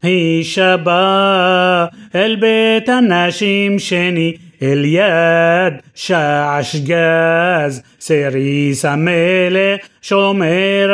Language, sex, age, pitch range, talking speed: Hebrew, male, 30-49, 165-195 Hz, 70 wpm